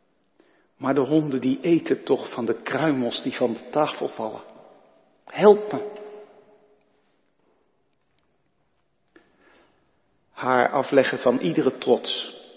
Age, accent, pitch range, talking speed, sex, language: 50-69, Dutch, 140-195 Hz, 100 wpm, male, Dutch